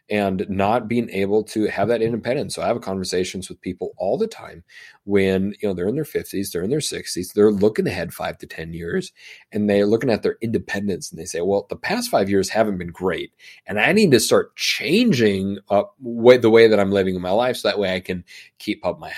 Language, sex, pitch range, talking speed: English, male, 90-110 Hz, 235 wpm